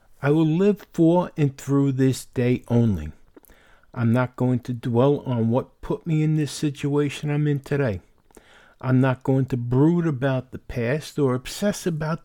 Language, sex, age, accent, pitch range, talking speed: English, male, 50-69, American, 120-150 Hz, 170 wpm